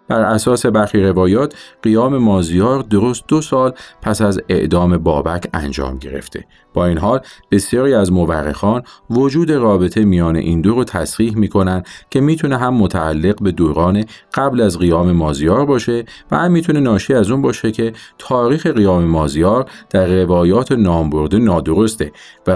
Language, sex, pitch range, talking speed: Arabic, male, 85-115 Hz, 150 wpm